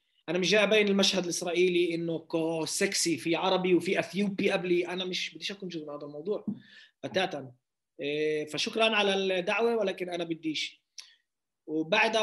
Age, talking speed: 20-39, 140 wpm